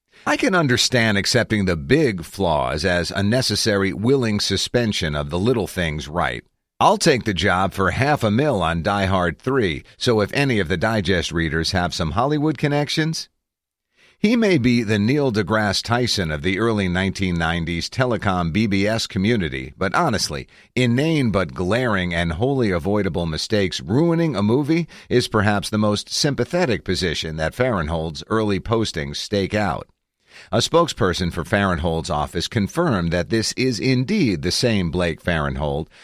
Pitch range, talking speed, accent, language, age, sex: 90-120 Hz, 155 wpm, American, English, 50-69, male